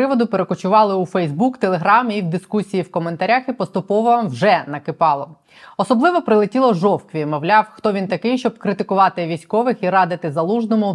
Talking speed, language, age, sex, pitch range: 140 wpm, Ukrainian, 20-39, female, 175-225 Hz